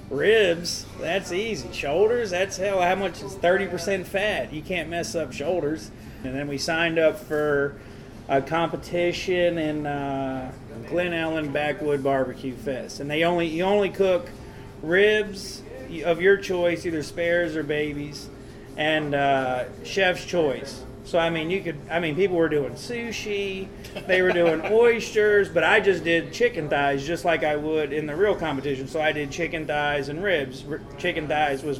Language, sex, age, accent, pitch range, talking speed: English, male, 40-59, American, 140-180 Hz, 165 wpm